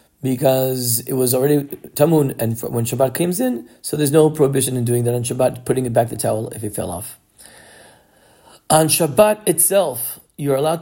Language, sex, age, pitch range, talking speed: English, male, 40-59, 115-140 Hz, 185 wpm